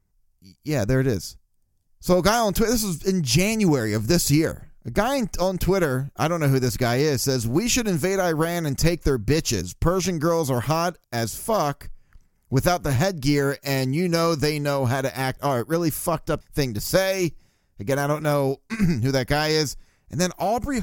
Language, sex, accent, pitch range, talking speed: English, male, American, 130-175 Hz, 205 wpm